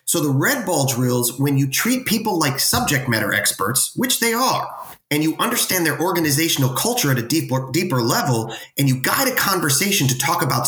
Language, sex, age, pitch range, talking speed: English, male, 30-49, 125-160 Hz, 195 wpm